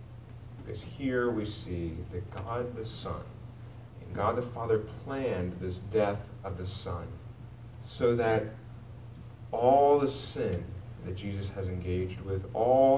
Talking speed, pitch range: 135 wpm, 105-120 Hz